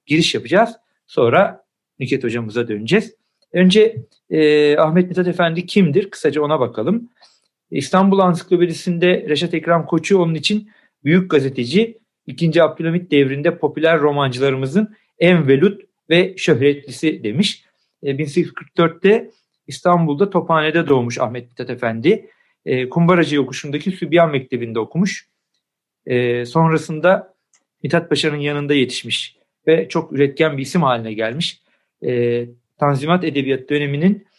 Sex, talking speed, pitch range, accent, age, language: male, 115 wpm, 140-180 Hz, native, 50-69, Turkish